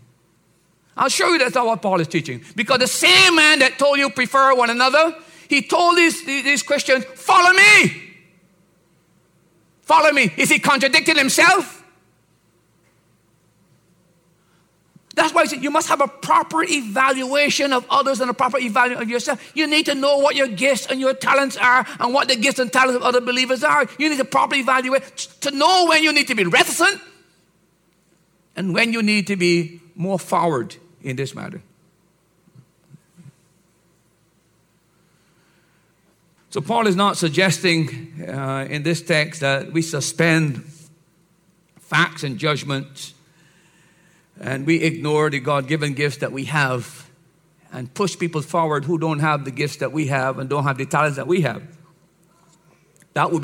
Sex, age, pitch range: male, 50-69, 160-260 Hz